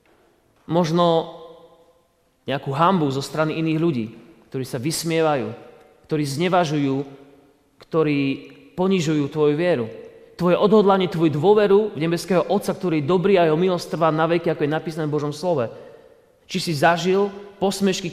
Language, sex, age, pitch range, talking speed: Slovak, male, 30-49, 145-185 Hz, 135 wpm